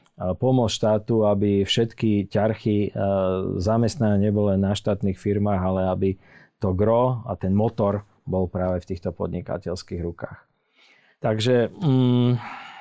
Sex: male